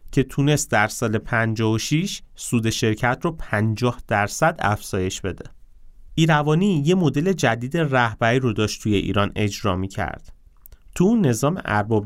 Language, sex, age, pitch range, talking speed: Persian, male, 30-49, 105-145 Hz, 130 wpm